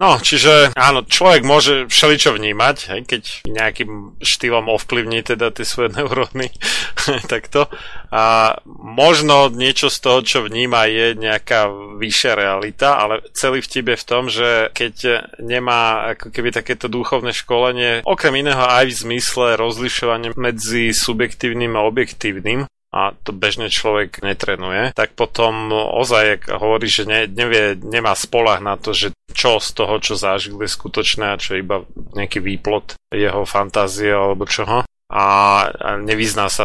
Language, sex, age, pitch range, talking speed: Slovak, male, 30-49, 100-125 Hz, 145 wpm